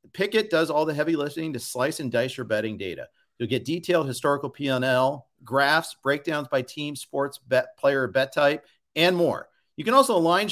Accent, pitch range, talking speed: American, 130-175 Hz, 190 wpm